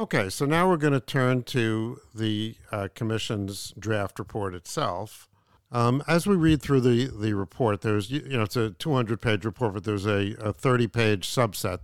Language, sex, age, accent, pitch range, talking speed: English, male, 50-69, American, 100-120 Hz, 195 wpm